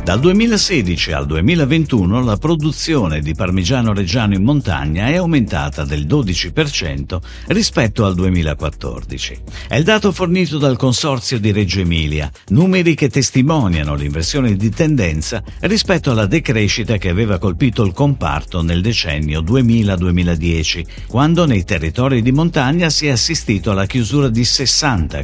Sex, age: male, 50-69